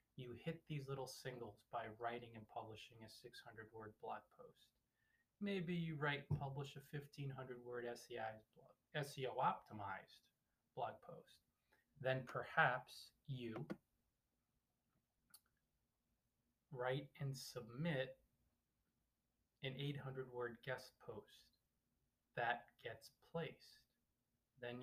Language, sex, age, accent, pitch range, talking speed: English, male, 20-39, American, 120-145 Hz, 95 wpm